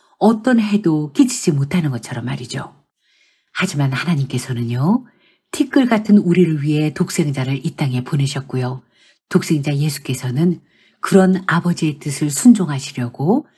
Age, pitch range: 50-69, 140-205 Hz